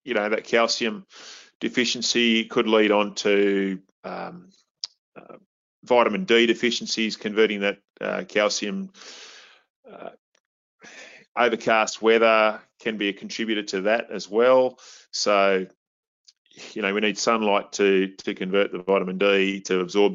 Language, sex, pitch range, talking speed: English, male, 100-115 Hz, 130 wpm